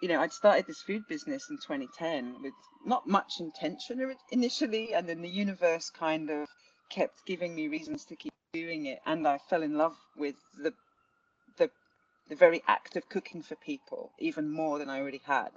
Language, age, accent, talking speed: English, 30-49, British, 190 wpm